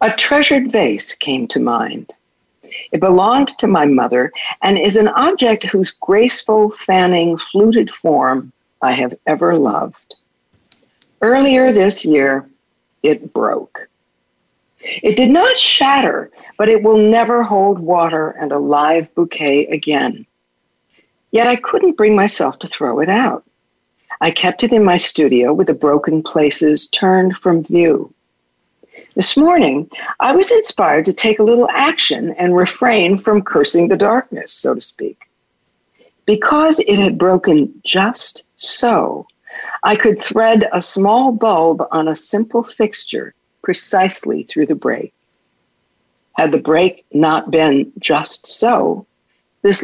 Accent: American